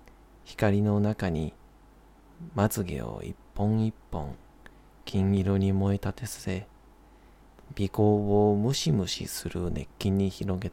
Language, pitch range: Japanese, 85-100 Hz